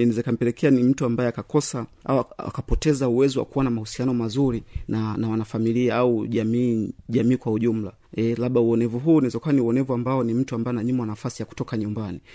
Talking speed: 185 wpm